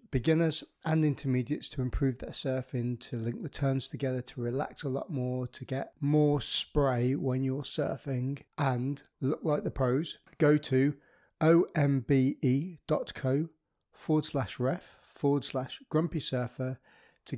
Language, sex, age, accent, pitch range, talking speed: English, male, 30-49, British, 130-150 Hz, 140 wpm